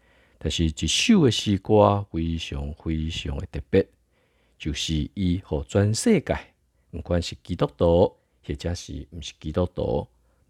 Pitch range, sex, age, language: 75-100 Hz, male, 50-69, Chinese